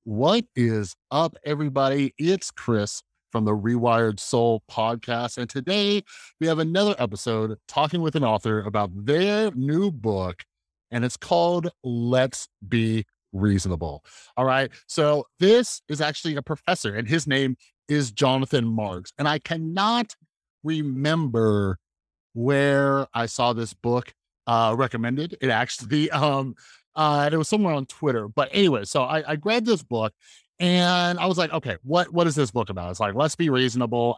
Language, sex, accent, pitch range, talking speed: English, male, American, 115-160 Hz, 155 wpm